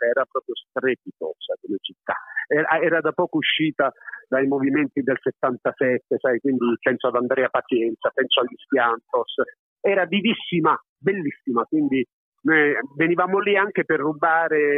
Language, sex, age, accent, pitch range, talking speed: Italian, male, 50-69, native, 130-200 Hz, 135 wpm